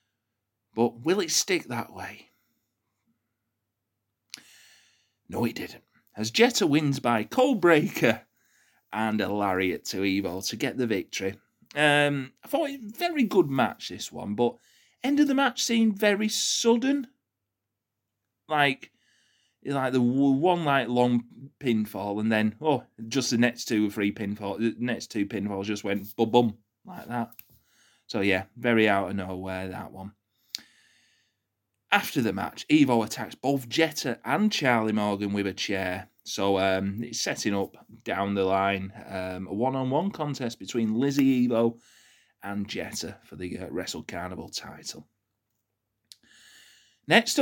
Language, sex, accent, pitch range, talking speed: English, male, British, 100-140 Hz, 145 wpm